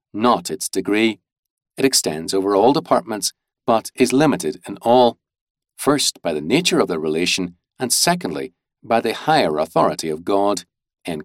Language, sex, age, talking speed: English, male, 50-69, 155 wpm